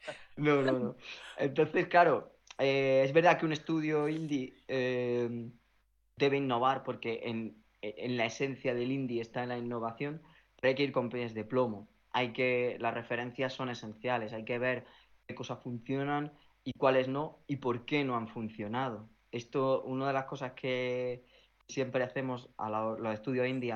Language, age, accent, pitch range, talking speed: Spanish, 20-39, Spanish, 115-140 Hz, 160 wpm